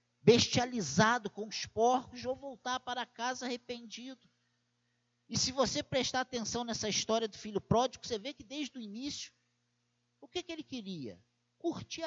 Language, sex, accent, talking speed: Portuguese, male, Brazilian, 155 wpm